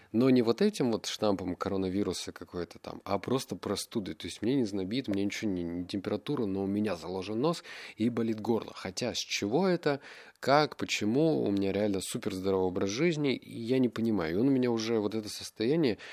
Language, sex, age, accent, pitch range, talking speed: Russian, male, 20-39, native, 95-115 Hz, 210 wpm